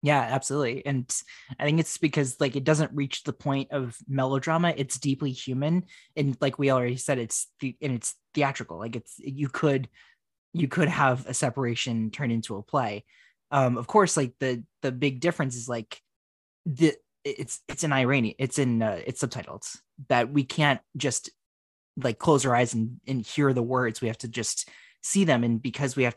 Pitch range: 115-140 Hz